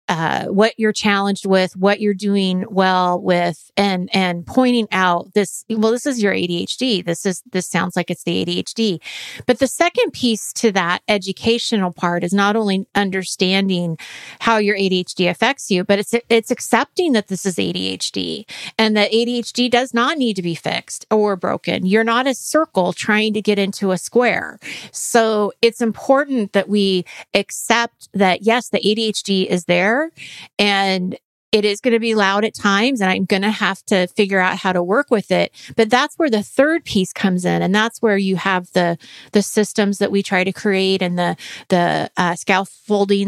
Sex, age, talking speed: female, 30-49, 185 wpm